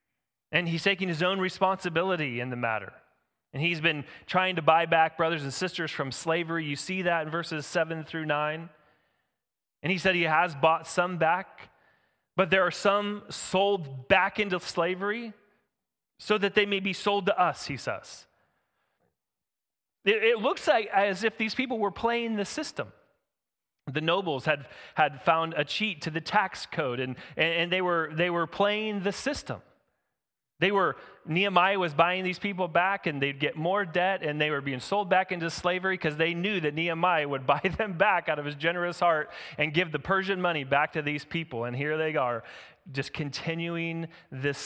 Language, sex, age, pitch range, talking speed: English, male, 30-49, 155-190 Hz, 185 wpm